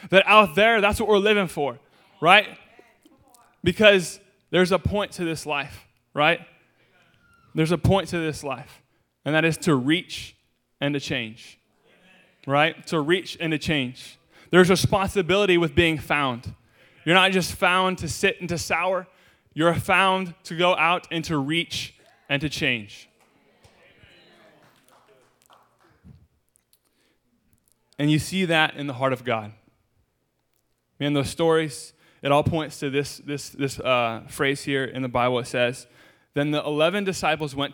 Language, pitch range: English, 135-175 Hz